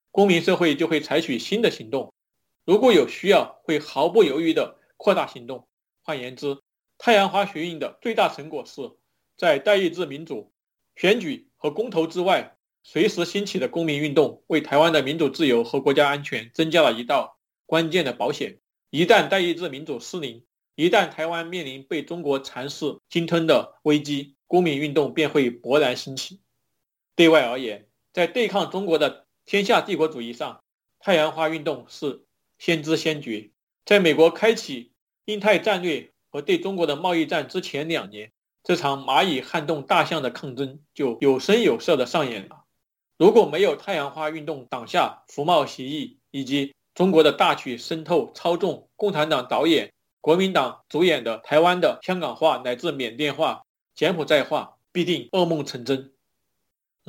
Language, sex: Chinese, male